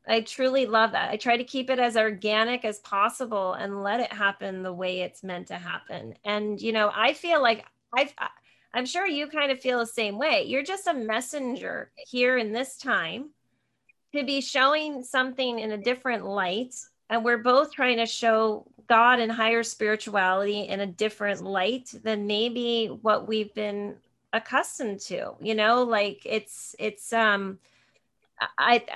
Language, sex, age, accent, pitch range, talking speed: English, female, 30-49, American, 215-270 Hz, 170 wpm